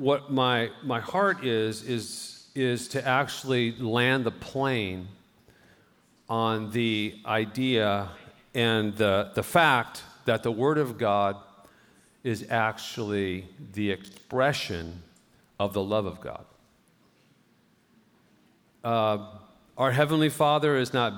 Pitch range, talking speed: 110-130 Hz, 110 wpm